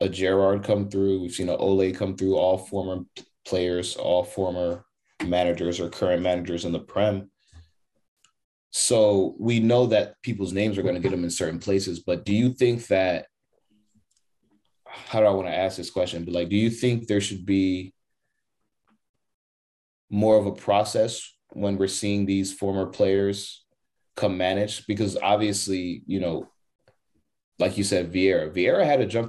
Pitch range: 90-105 Hz